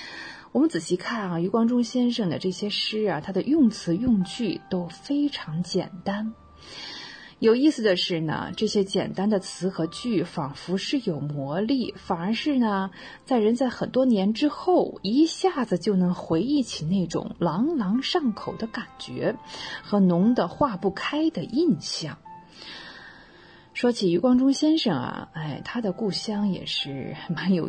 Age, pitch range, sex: 30-49, 170-250 Hz, female